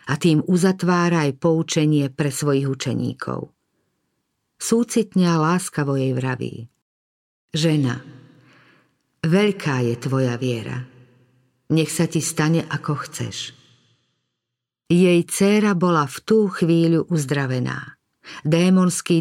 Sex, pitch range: female, 145-185 Hz